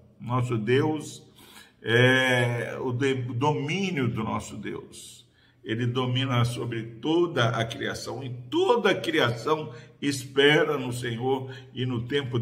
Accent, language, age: Brazilian, Portuguese, 50-69